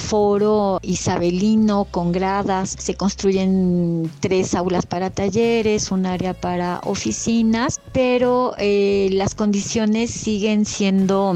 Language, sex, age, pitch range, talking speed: Spanish, female, 40-59, 190-220 Hz, 105 wpm